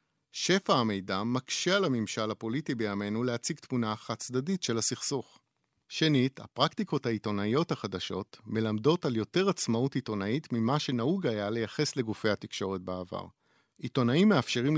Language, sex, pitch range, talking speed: Hebrew, male, 105-140 Hz, 120 wpm